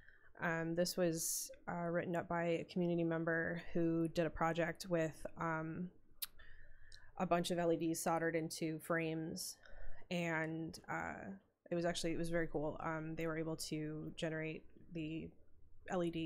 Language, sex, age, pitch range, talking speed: English, female, 20-39, 165-180 Hz, 150 wpm